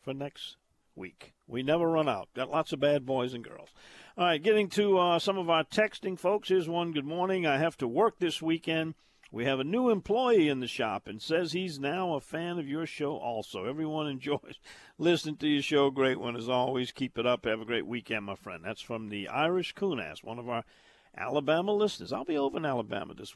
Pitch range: 125-170 Hz